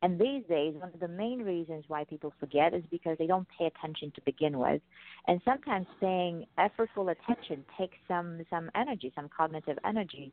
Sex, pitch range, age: female, 145-180 Hz, 40-59